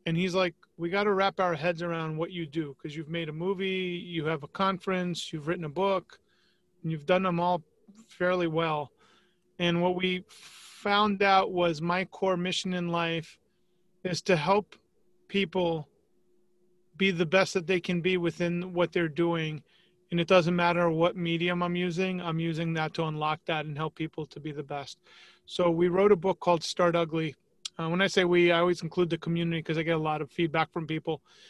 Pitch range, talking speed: 165-185 Hz, 200 wpm